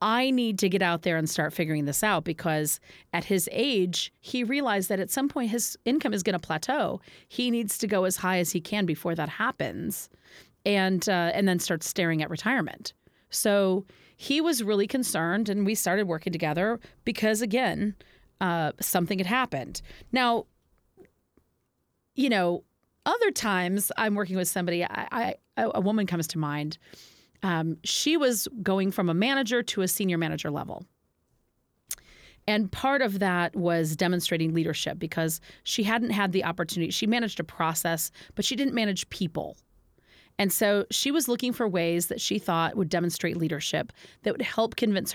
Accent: American